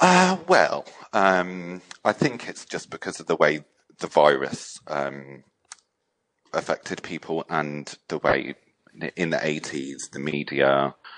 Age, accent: 40-59, British